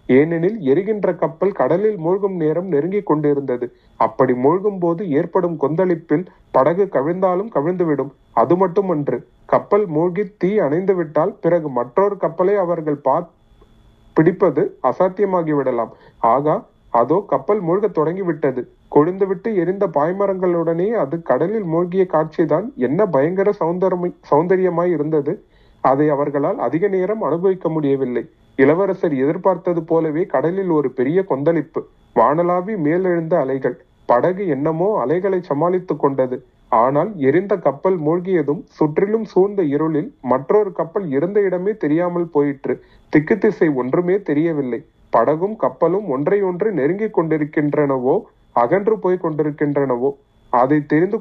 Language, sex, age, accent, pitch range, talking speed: Tamil, male, 40-59, native, 145-190 Hz, 110 wpm